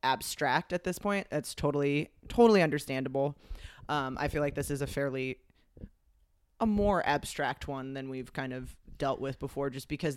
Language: English